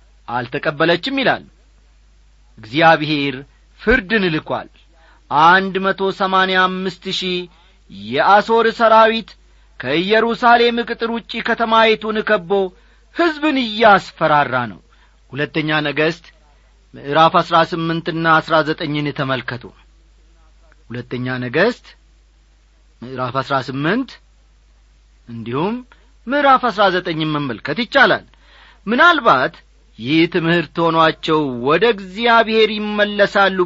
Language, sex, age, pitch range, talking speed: Amharic, male, 40-59, 145-225 Hz, 70 wpm